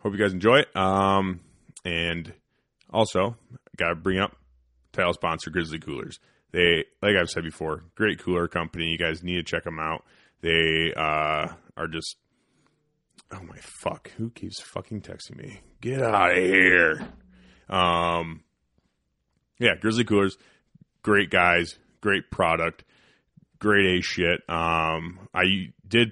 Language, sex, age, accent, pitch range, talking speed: English, male, 30-49, American, 80-95 Hz, 140 wpm